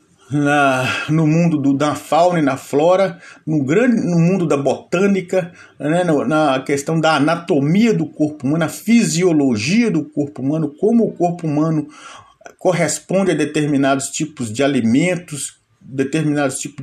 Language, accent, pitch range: Portuguese, Brazilian, 145-190 Hz